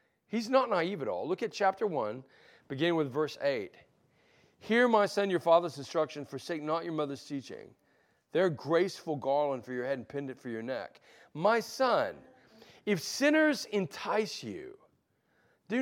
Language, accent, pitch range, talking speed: English, American, 140-225 Hz, 160 wpm